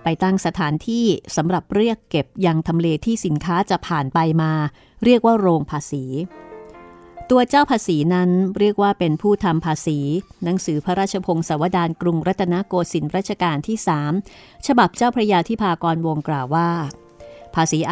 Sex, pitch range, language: female, 155-195 Hz, Thai